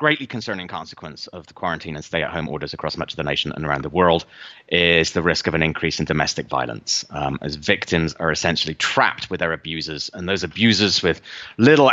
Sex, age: male, 30-49